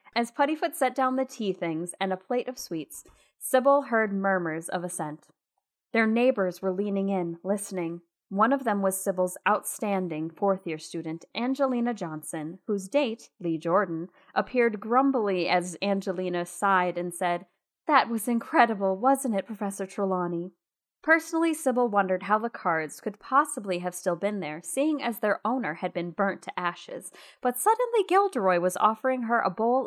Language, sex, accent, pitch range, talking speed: English, female, American, 185-250 Hz, 160 wpm